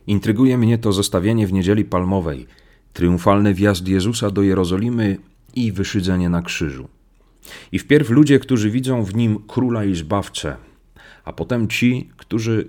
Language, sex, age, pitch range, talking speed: Polish, male, 40-59, 90-110 Hz, 140 wpm